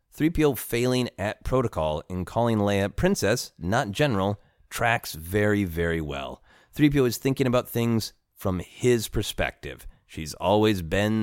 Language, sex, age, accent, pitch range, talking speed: English, male, 30-49, American, 85-115 Hz, 135 wpm